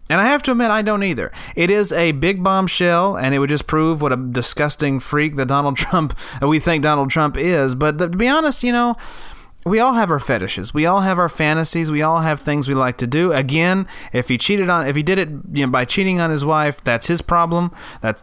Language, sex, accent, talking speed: English, male, American, 245 wpm